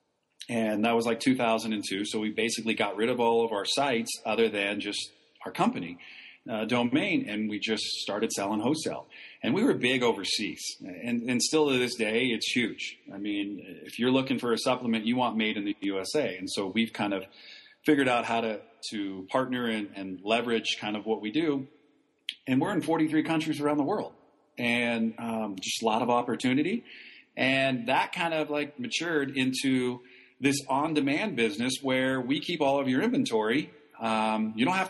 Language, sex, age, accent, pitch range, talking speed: English, male, 40-59, American, 115-145 Hz, 190 wpm